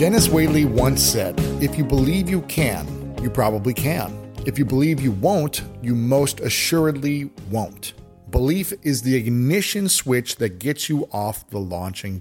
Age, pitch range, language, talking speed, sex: 40-59, 125-160 Hz, English, 155 wpm, male